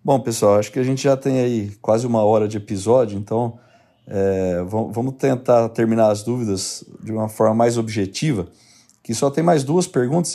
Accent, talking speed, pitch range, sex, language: Brazilian, 185 wpm, 115-135 Hz, male, Portuguese